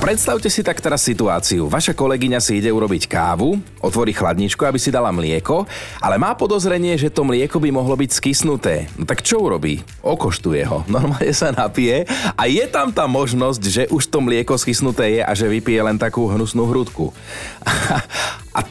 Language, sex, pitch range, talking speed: Slovak, male, 95-130 Hz, 175 wpm